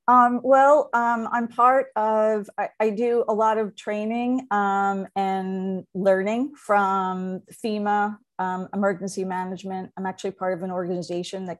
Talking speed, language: 145 wpm, English